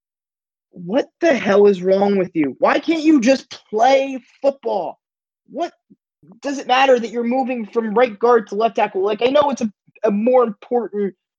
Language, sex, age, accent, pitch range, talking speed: English, male, 20-39, American, 185-245 Hz, 180 wpm